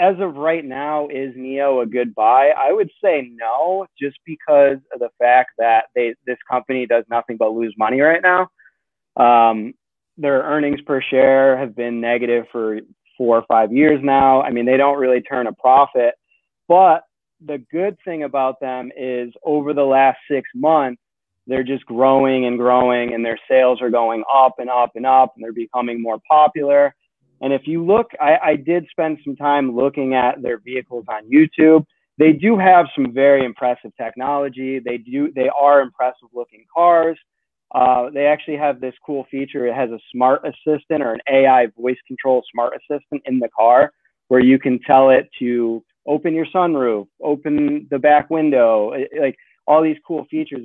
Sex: male